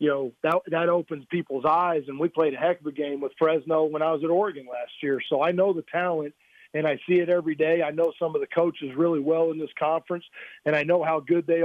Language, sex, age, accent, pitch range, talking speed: English, male, 40-59, American, 150-170 Hz, 270 wpm